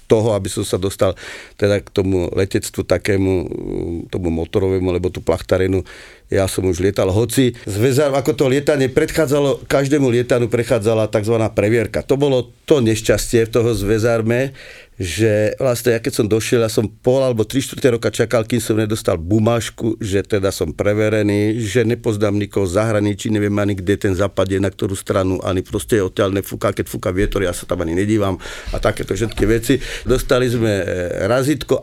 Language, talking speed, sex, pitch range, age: Slovak, 170 wpm, male, 105-125 Hz, 50-69